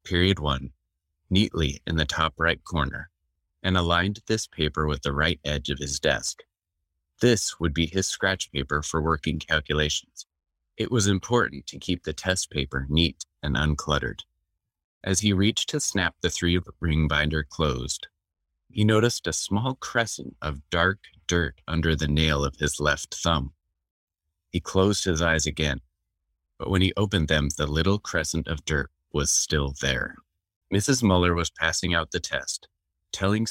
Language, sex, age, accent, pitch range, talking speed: English, male, 30-49, American, 75-90 Hz, 160 wpm